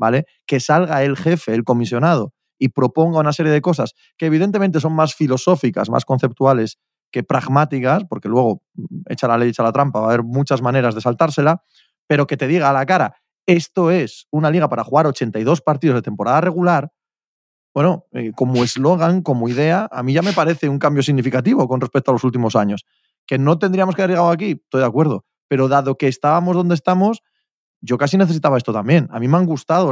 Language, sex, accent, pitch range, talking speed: Spanish, male, Spanish, 120-155 Hz, 200 wpm